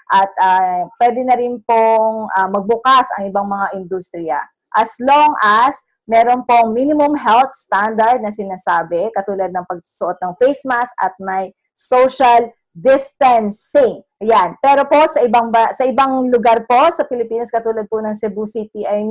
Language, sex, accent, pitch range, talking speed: English, female, Filipino, 220-320 Hz, 155 wpm